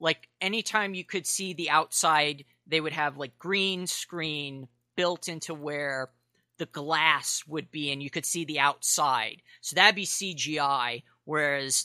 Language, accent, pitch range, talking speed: English, American, 130-170 Hz, 155 wpm